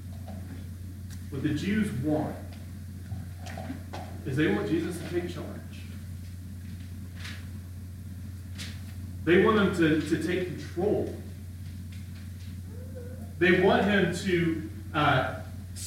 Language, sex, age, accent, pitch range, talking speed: English, male, 40-59, American, 90-150 Hz, 85 wpm